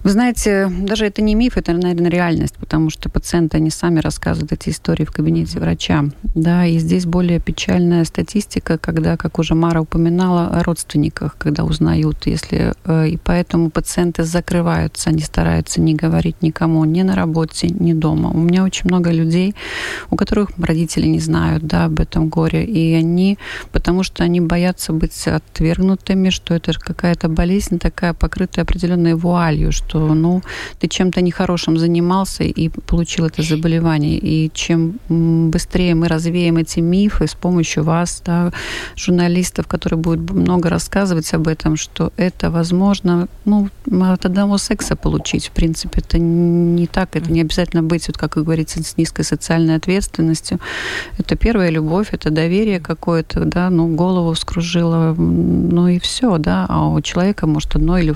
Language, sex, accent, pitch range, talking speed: Russian, female, native, 160-180 Hz, 155 wpm